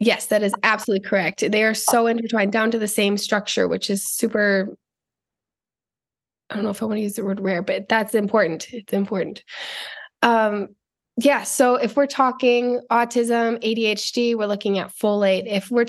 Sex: female